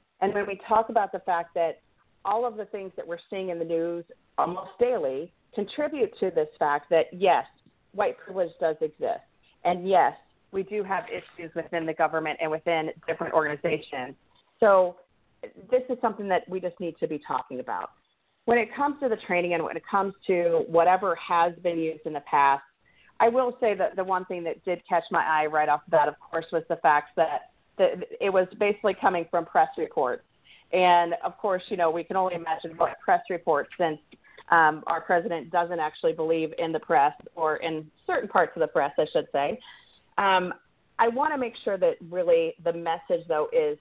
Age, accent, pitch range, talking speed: 40-59, American, 165-210 Hz, 200 wpm